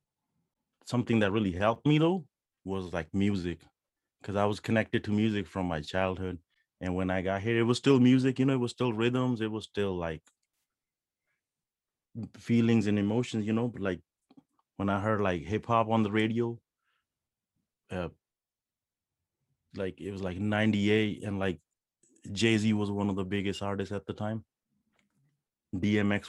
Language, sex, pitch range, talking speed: English, male, 95-115 Hz, 165 wpm